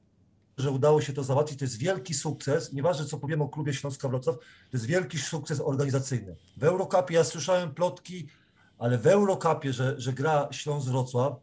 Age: 40-59